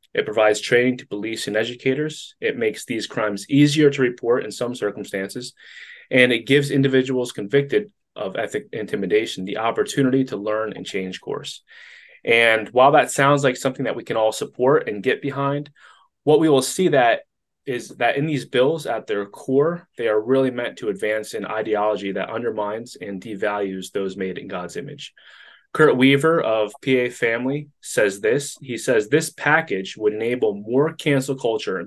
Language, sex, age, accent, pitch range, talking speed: English, male, 20-39, American, 110-145 Hz, 175 wpm